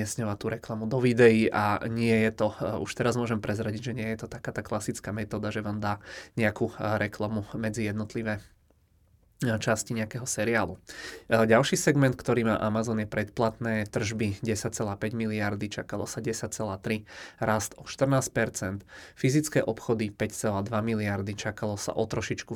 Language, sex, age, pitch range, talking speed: Czech, male, 20-39, 105-115 Hz, 145 wpm